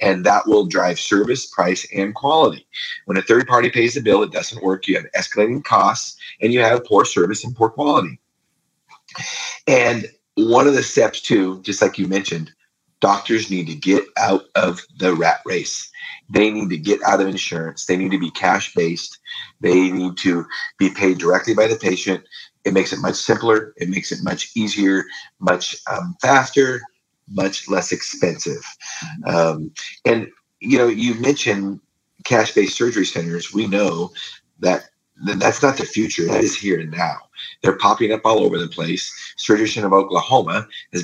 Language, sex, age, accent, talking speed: English, male, 30-49, American, 175 wpm